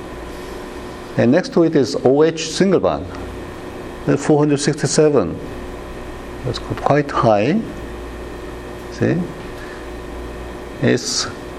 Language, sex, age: Korean, male, 60-79